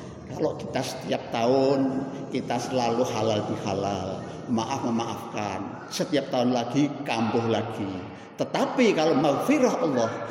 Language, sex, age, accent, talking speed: Indonesian, male, 50-69, native, 115 wpm